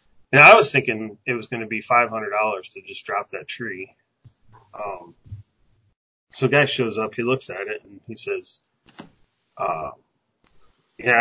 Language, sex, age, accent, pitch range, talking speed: English, male, 30-49, American, 115-145 Hz, 170 wpm